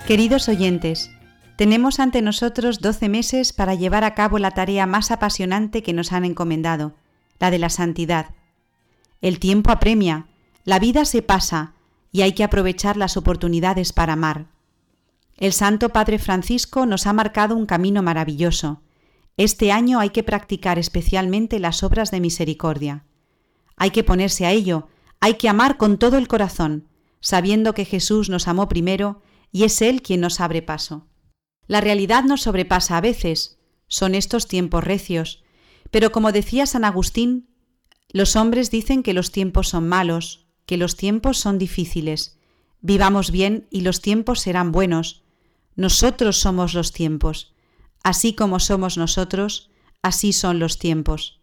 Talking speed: 150 wpm